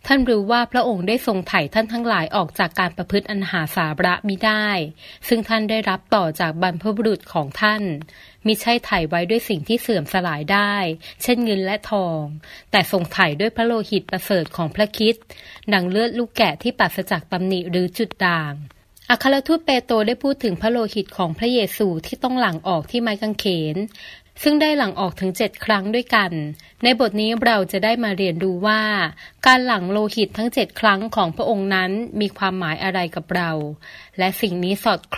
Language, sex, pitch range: Thai, female, 180-225 Hz